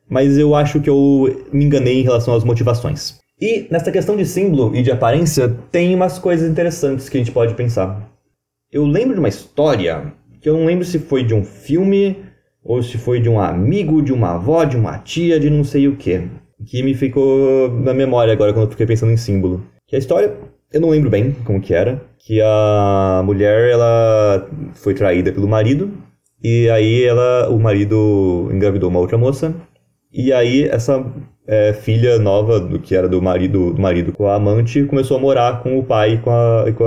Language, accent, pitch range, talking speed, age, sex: Portuguese, Brazilian, 110-140 Hz, 200 wpm, 20-39, male